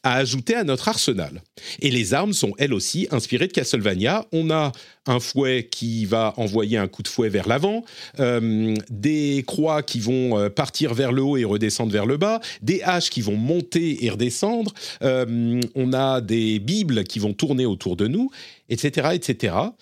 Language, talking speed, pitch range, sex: French, 185 wpm, 115-170 Hz, male